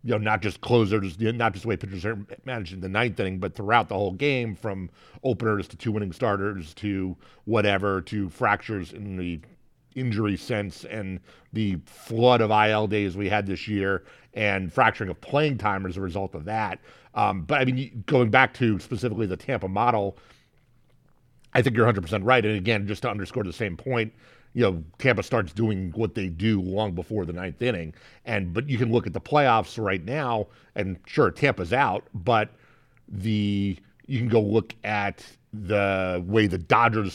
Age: 50-69